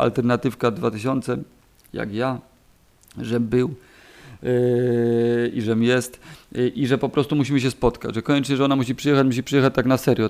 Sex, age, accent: male, 40-59, native